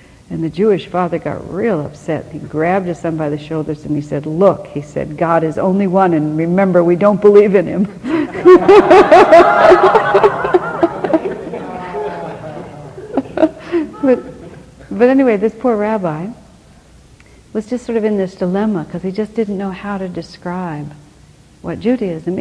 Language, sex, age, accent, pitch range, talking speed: English, female, 60-79, American, 165-210 Hz, 145 wpm